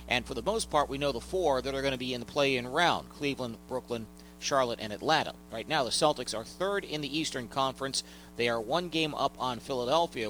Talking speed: 235 wpm